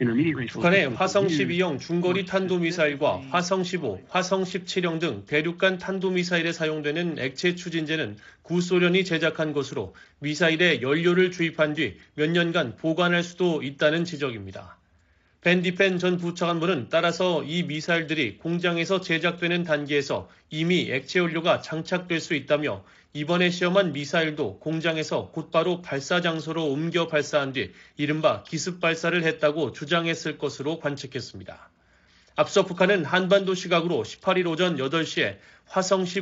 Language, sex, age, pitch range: Korean, male, 30-49, 150-180 Hz